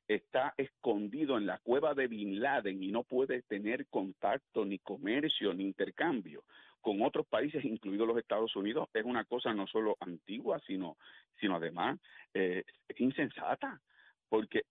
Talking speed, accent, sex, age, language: 145 wpm, Venezuelan, male, 50-69, Spanish